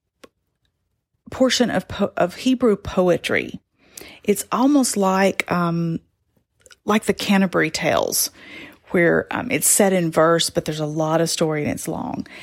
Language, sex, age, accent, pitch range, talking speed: English, female, 40-59, American, 175-235 Hz, 140 wpm